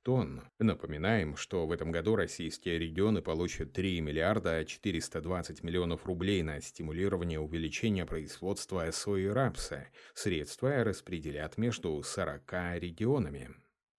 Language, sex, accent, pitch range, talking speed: Russian, male, native, 85-110 Hz, 105 wpm